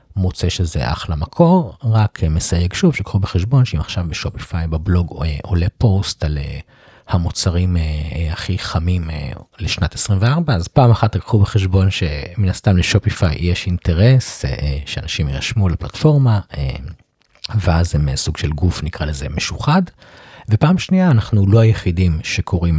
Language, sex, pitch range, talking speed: Hebrew, male, 80-110 Hz, 125 wpm